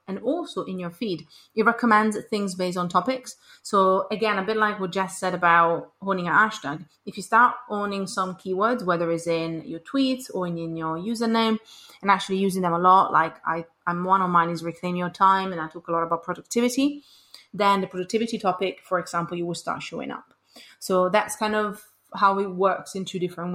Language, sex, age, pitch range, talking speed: English, female, 30-49, 175-215 Hz, 210 wpm